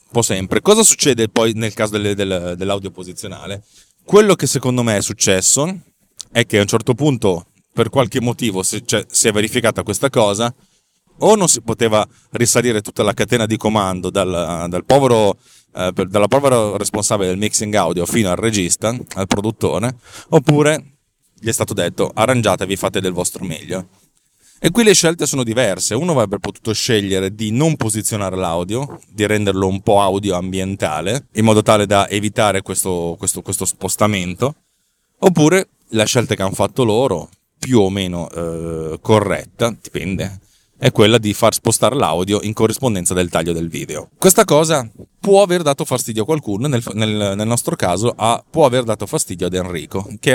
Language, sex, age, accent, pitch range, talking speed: Italian, male, 30-49, native, 95-125 Hz, 160 wpm